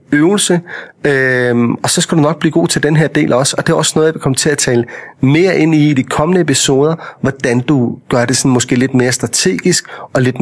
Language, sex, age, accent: Danish, male, 30-49, native